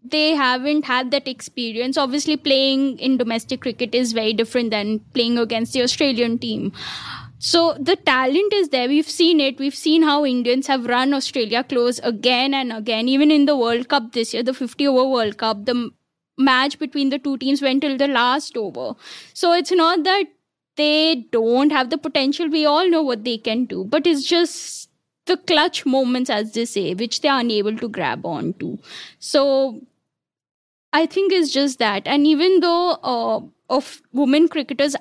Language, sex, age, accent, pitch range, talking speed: English, female, 10-29, Indian, 240-290 Hz, 180 wpm